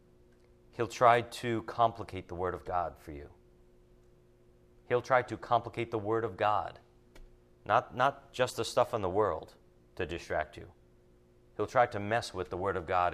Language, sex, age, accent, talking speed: English, male, 40-59, American, 175 wpm